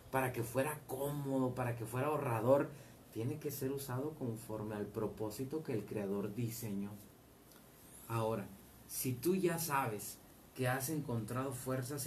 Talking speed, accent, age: 140 wpm, Mexican, 30-49